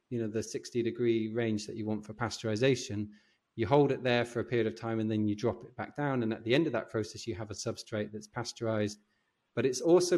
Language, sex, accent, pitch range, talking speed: English, male, British, 110-135 Hz, 255 wpm